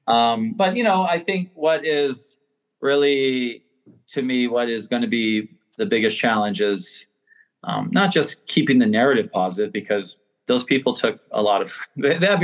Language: English